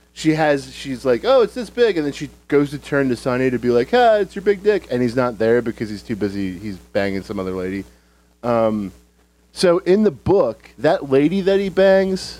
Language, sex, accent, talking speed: English, male, American, 230 wpm